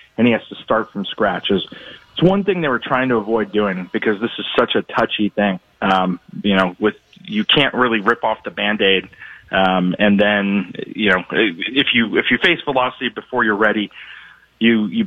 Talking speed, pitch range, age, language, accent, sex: 205 wpm, 105-125 Hz, 30-49, English, American, male